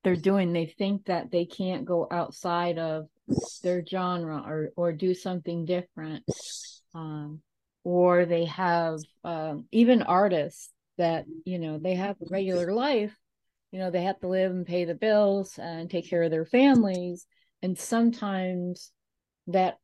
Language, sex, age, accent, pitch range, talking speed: English, female, 30-49, American, 160-195 Hz, 155 wpm